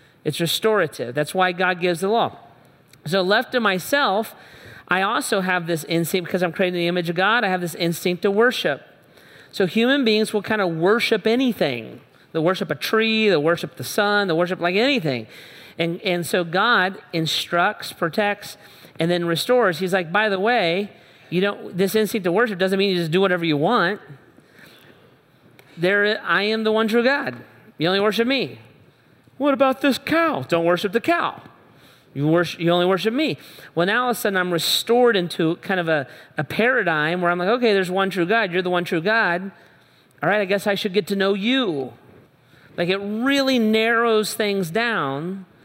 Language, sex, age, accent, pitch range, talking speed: English, male, 40-59, American, 170-220 Hz, 190 wpm